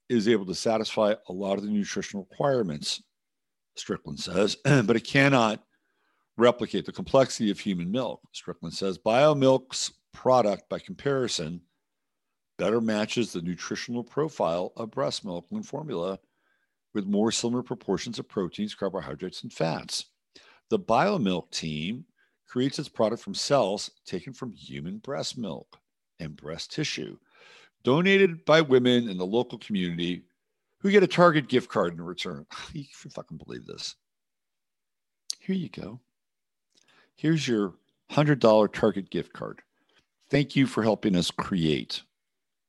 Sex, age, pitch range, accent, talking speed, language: male, 50-69, 90-130 Hz, American, 135 wpm, English